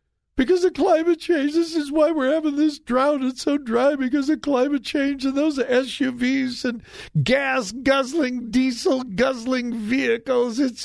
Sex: male